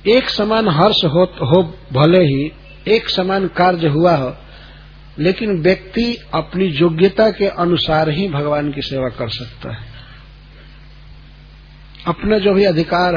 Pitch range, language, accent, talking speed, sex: 140-190 Hz, English, Indian, 130 wpm, male